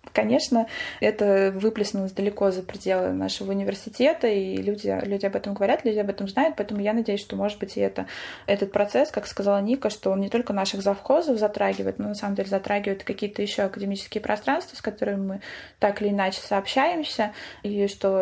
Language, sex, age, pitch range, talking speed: Russian, female, 20-39, 185-215 Hz, 185 wpm